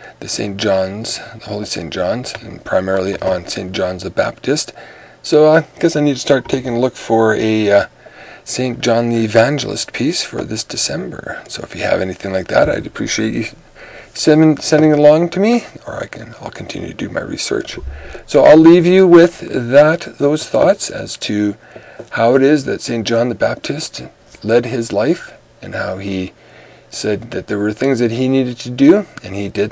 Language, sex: English, male